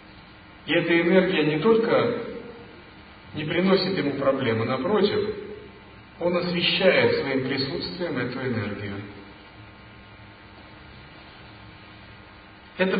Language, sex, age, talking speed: Russian, male, 40-59, 80 wpm